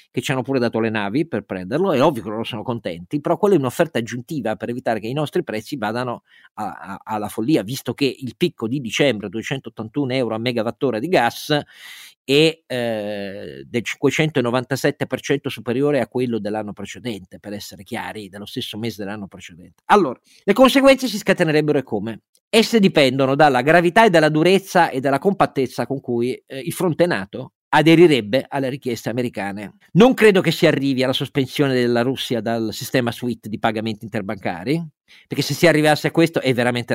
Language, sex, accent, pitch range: Italian, male, native, 115-150 Hz